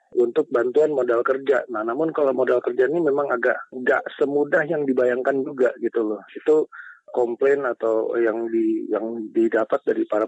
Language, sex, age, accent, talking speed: Indonesian, male, 40-59, native, 165 wpm